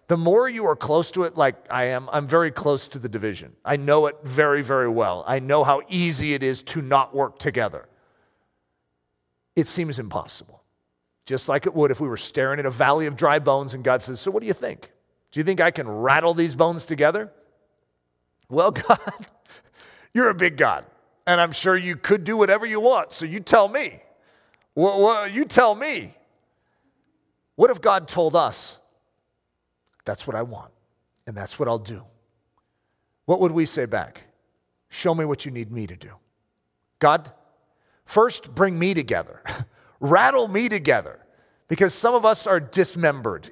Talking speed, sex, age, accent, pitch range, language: 180 wpm, male, 40-59, American, 135-185 Hz, English